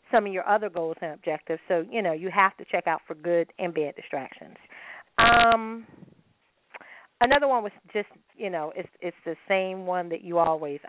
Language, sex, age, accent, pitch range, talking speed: English, female, 40-59, American, 170-230 Hz, 195 wpm